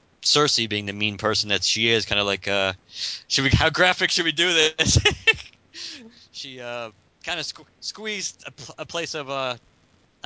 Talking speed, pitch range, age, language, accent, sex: 185 wpm, 95-125 Hz, 30-49, English, American, male